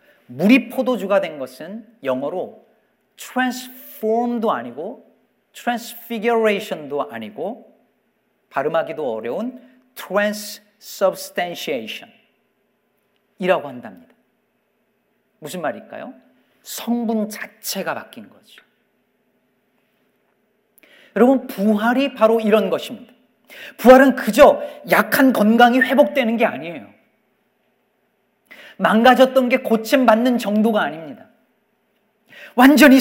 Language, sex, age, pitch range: Korean, male, 40-59, 220-275 Hz